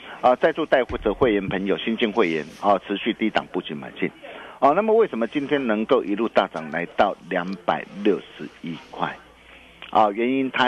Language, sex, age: Chinese, male, 50-69